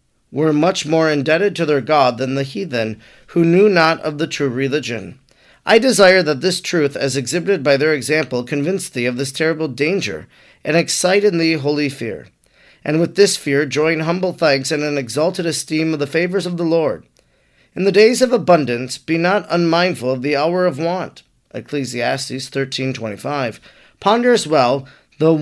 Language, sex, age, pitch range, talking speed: English, male, 40-59, 140-175 Hz, 175 wpm